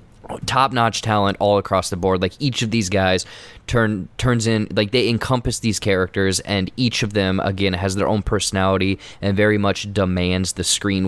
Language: English